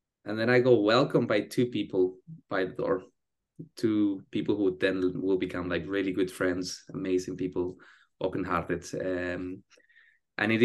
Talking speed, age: 145 wpm, 20-39